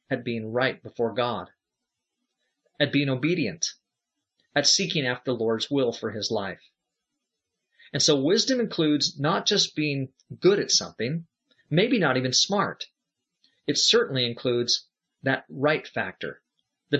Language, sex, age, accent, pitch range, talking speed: English, male, 40-59, American, 130-190 Hz, 135 wpm